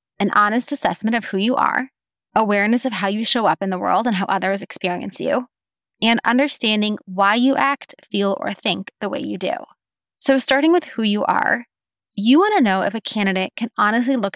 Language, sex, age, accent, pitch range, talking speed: English, female, 20-39, American, 195-240 Hz, 205 wpm